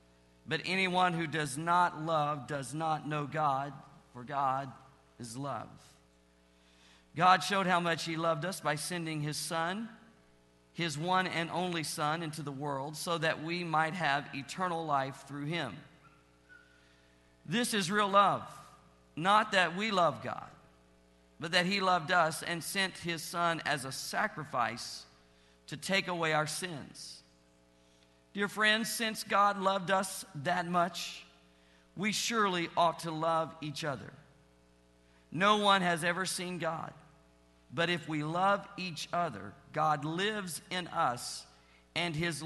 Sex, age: male, 50-69